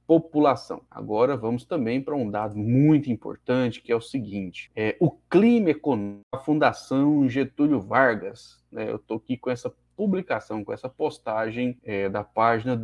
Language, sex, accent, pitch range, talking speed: Portuguese, male, Brazilian, 115-160 Hz, 160 wpm